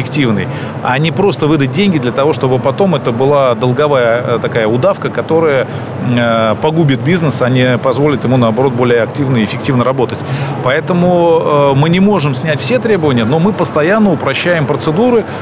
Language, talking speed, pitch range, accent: Russian, 150 wpm, 125-160 Hz, native